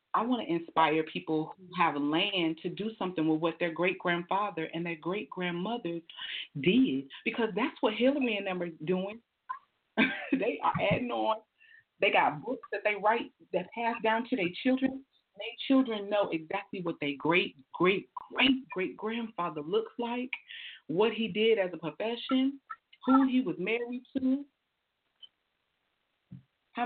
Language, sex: English, female